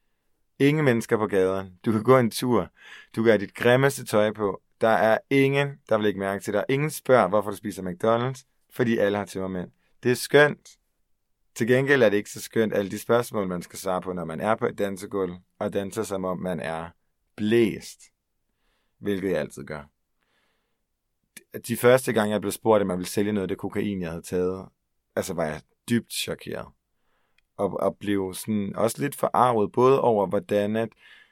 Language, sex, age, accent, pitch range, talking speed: Danish, male, 30-49, native, 95-115 Hz, 190 wpm